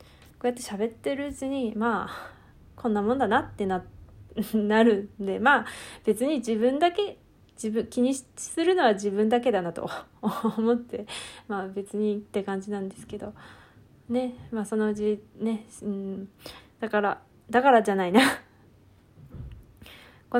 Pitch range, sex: 200-245 Hz, female